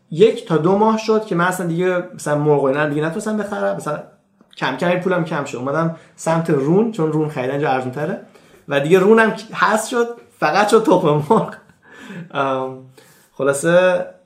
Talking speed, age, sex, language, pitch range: 165 wpm, 30-49, male, Persian, 150-200 Hz